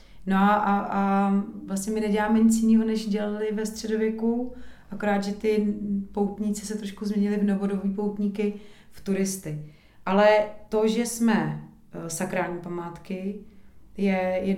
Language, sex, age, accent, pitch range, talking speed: Czech, female, 30-49, native, 175-205 Hz, 135 wpm